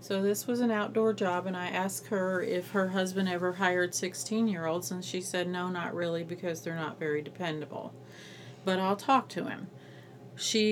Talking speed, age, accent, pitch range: 185 wpm, 40-59, American, 165-185 Hz